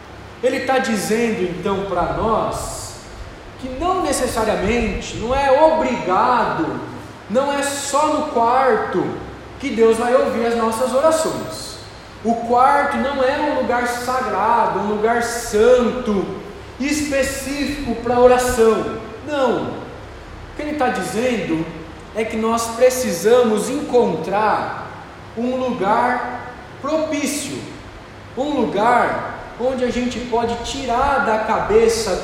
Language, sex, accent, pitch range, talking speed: Portuguese, male, Brazilian, 235-275 Hz, 110 wpm